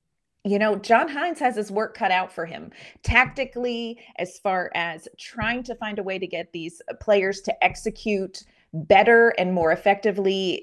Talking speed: 170 wpm